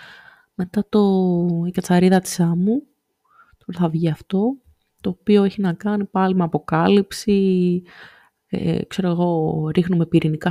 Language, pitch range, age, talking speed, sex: Greek, 170-210 Hz, 20-39, 130 wpm, female